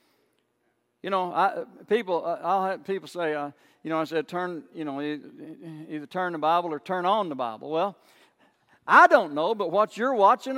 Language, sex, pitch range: English, male, 160-245 Hz